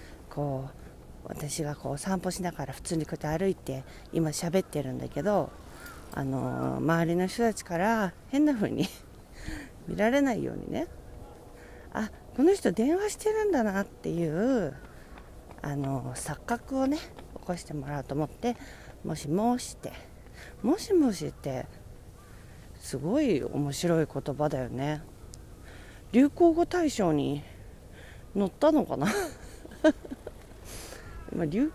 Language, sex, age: Japanese, female, 40-59